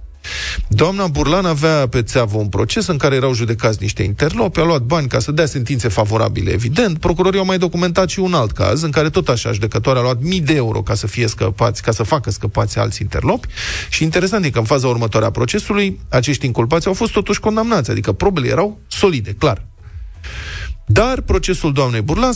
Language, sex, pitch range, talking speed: Romanian, male, 110-160 Hz, 200 wpm